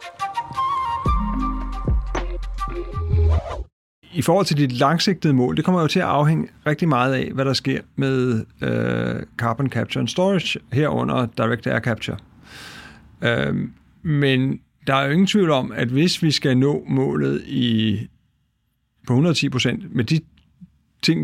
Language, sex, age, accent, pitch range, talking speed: Danish, male, 50-69, native, 115-145 Hz, 140 wpm